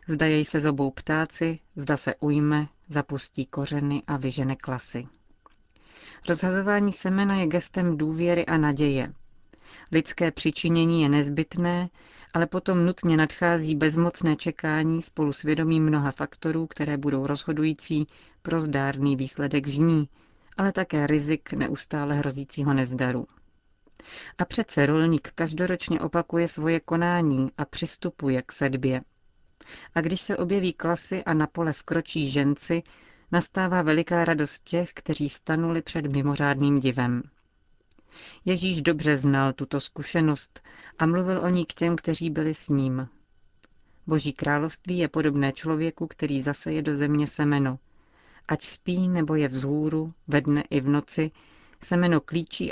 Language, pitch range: Czech, 145-170 Hz